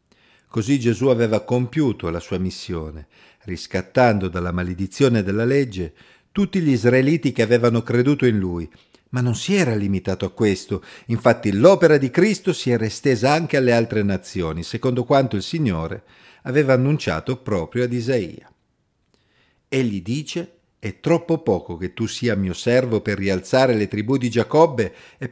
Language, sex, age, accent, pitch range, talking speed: Italian, male, 50-69, native, 100-140 Hz, 150 wpm